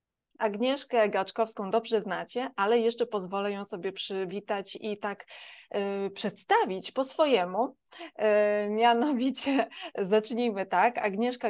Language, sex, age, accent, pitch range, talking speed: Polish, female, 20-39, native, 200-250 Hz, 100 wpm